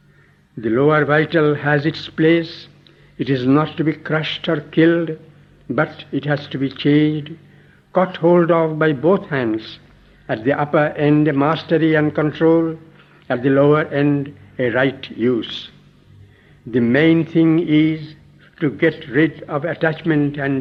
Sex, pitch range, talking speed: male, 140-160 Hz, 150 wpm